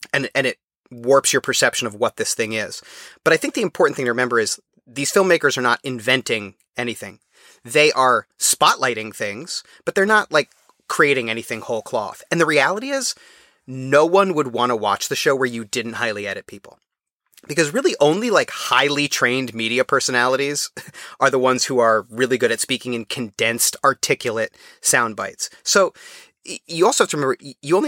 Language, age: English, 30-49